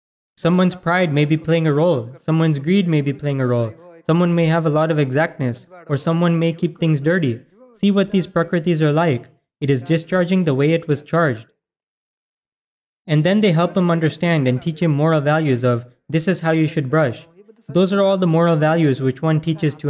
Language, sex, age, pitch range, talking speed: Gujarati, male, 20-39, 145-175 Hz, 210 wpm